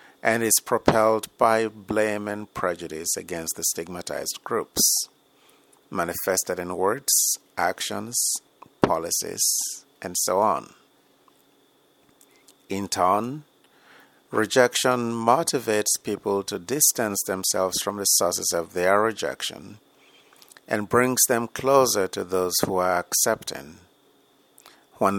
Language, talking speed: English, 100 wpm